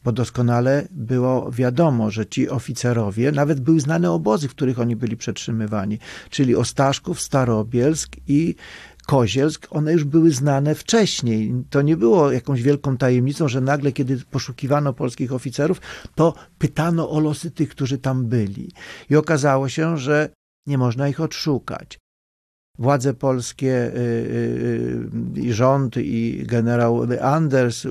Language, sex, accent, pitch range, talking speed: Polish, male, native, 120-145 Hz, 135 wpm